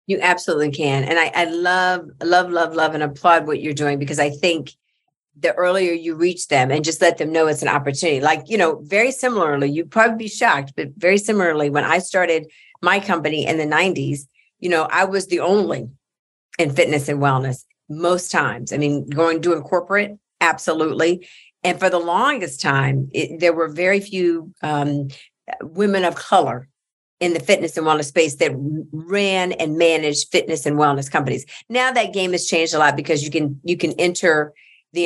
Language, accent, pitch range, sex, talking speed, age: English, American, 150-180 Hz, female, 190 wpm, 50-69